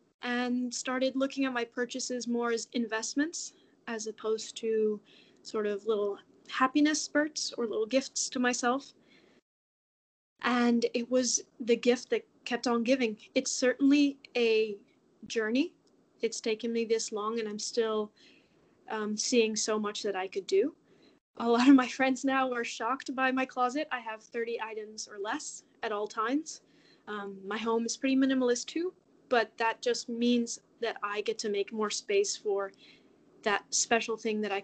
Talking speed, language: 165 wpm, English